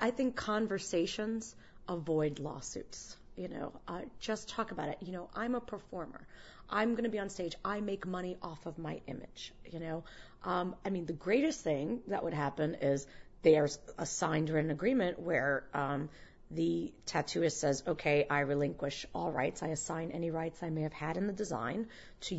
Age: 30-49